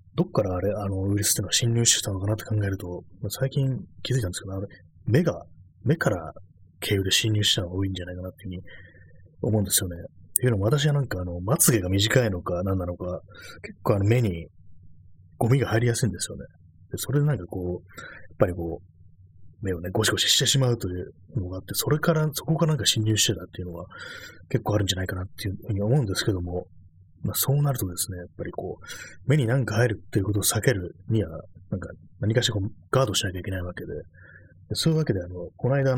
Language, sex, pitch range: Japanese, male, 90-115 Hz